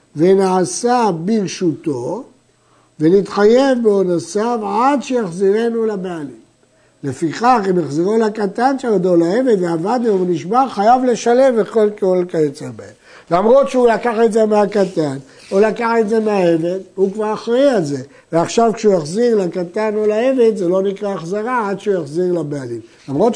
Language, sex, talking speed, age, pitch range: Hebrew, male, 135 wpm, 60-79, 175-230 Hz